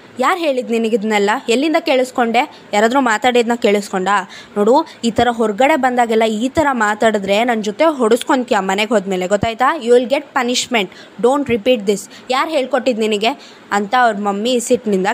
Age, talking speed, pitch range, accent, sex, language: 20-39, 145 wpm, 215-270 Hz, native, female, Kannada